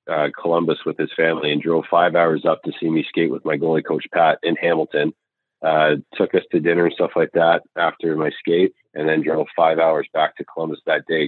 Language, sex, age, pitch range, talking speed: English, male, 30-49, 70-80 Hz, 230 wpm